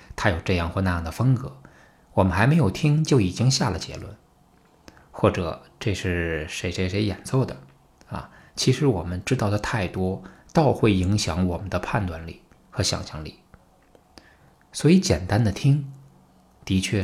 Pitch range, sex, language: 90-120 Hz, male, Chinese